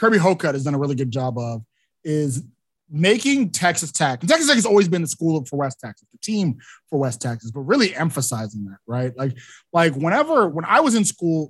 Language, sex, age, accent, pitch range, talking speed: English, male, 20-39, American, 135-190 Hz, 215 wpm